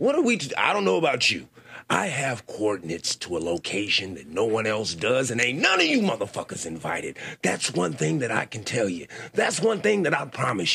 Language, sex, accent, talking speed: English, male, American, 235 wpm